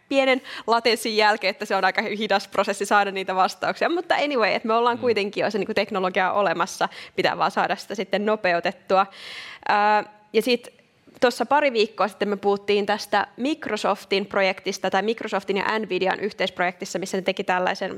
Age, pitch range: 20-39, 190-225 Hz